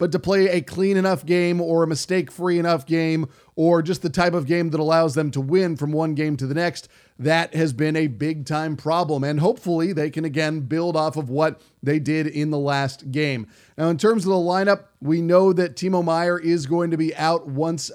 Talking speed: 225 wpm